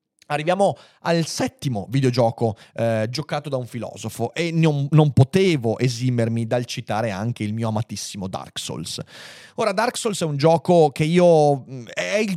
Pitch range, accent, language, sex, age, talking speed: 120-165 Hz, native, Italian, male, 30-49, 155 wpm